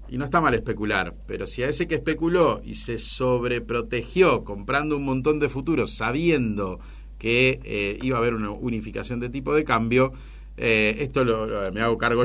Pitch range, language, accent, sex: 110-140 Hz, Spanish, Argentinian, male